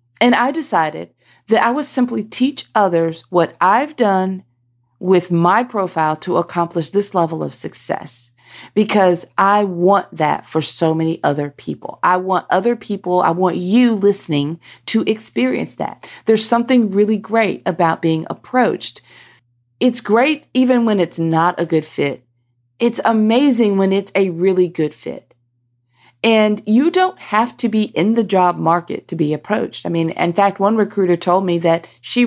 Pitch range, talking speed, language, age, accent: 165-220 Hz, 165 wpm, English, 40-59, American